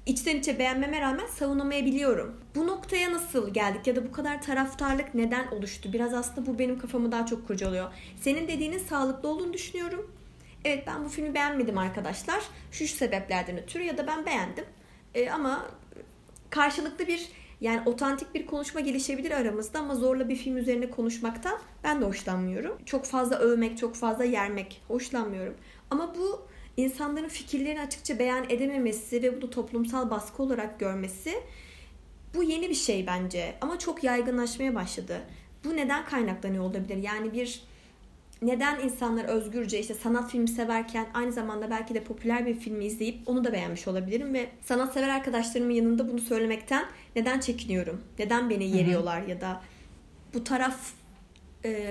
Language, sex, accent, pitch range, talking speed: Turkish, female, native, 225-280 Hz, 155 wpm